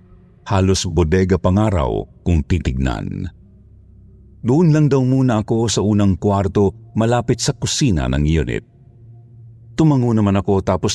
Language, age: Filipino, 50-69